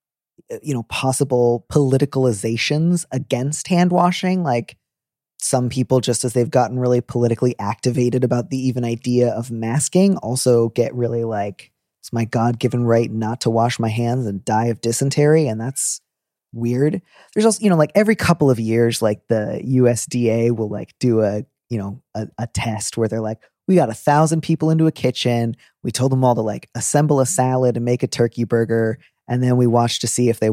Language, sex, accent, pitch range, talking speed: English, male, American, 115-135 Hz, 190 wpm